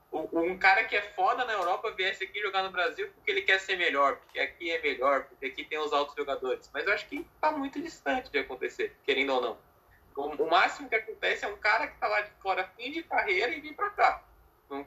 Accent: Brazilian